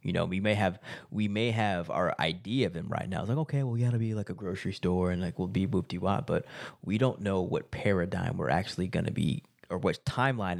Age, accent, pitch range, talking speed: 20-39, American, 95-125 Hz, 255 wpm